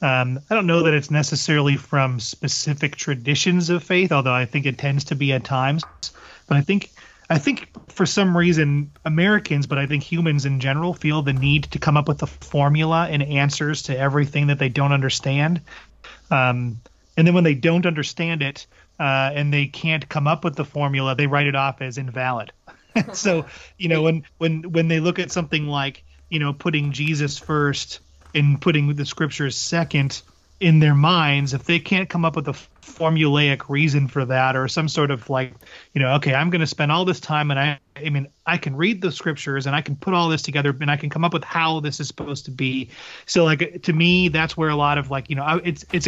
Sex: male